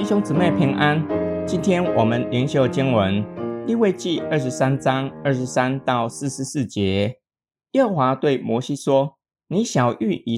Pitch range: 115-165 Hz